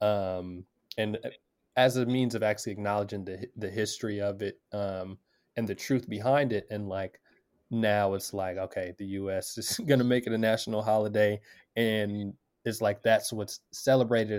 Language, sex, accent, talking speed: English, male, American, 170 wpm